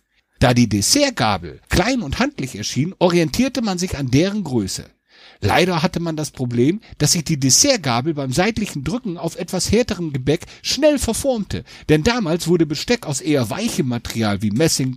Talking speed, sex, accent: 165 wpm, male, German